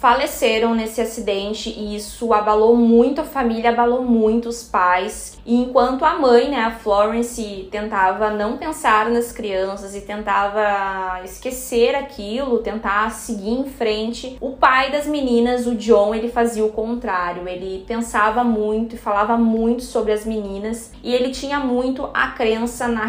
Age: 20-39